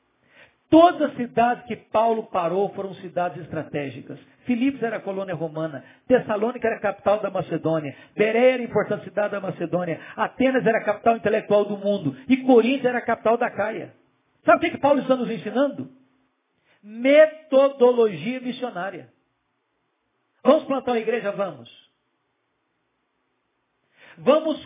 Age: 50-69